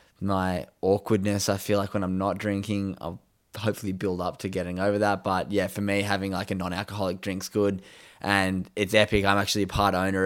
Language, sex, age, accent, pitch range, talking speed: English, male, 10-29, Australian, 95-105 Hz, 205 wpm